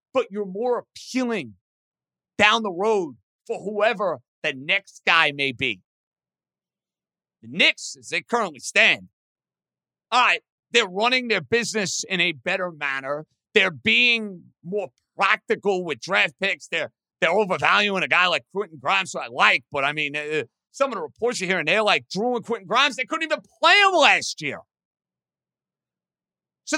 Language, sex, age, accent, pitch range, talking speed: English, male, 50-69, American, 170-235 Hz, 165 wpm